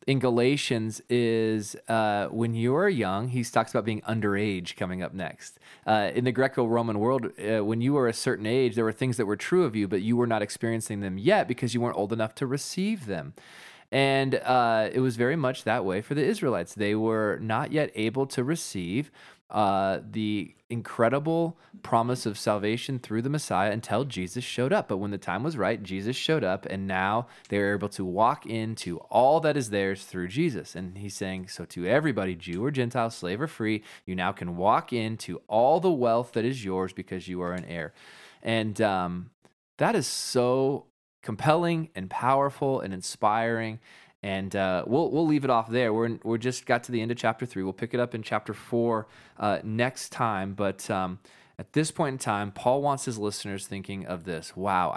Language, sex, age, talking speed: English, male, 20-39, 205 wpm